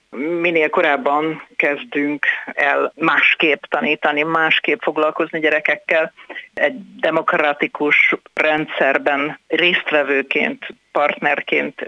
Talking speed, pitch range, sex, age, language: 70 wpm, 145-160 Hz, female, 60-79, Hungarian